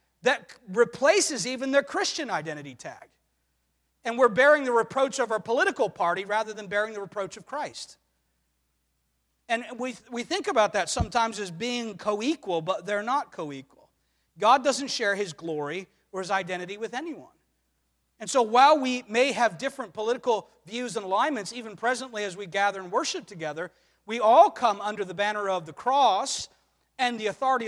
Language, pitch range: English, 200-260 Hz